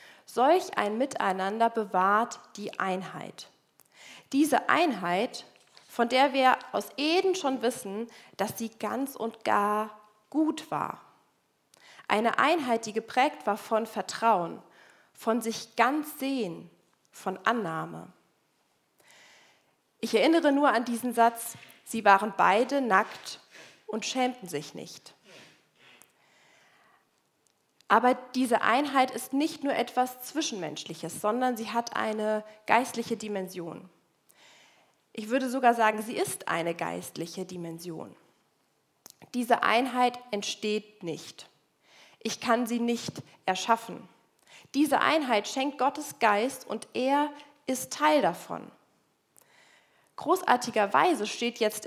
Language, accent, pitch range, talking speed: German, German, 210-265 Hz, 110 wpm